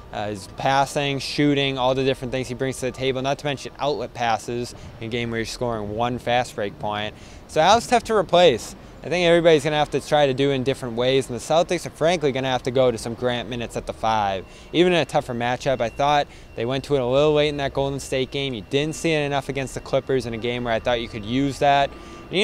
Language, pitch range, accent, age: English, 120-150 Hz, American, 20-39